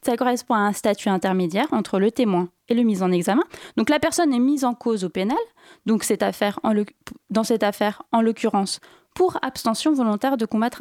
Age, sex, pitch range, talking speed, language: 20-39, female, 200-270 Hz, 210 wpm, French